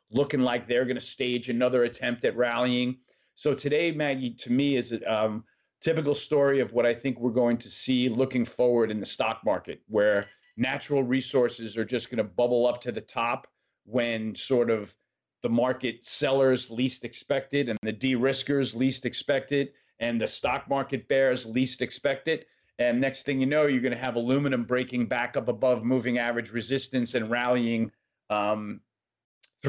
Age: 40-59